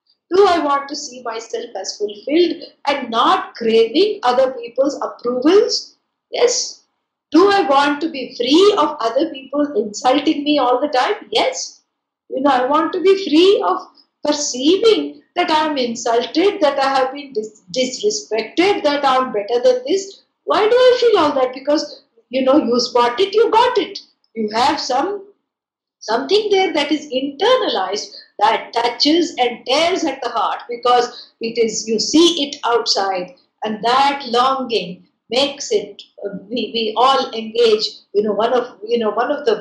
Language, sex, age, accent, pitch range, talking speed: English, female, 60-79, Indian, 235-320 Hz, 170 wpm